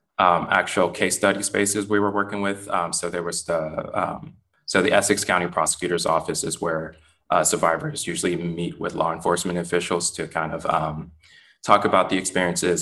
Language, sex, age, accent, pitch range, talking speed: English, male, 20-39, American, 85-100 Hz, 185 wpm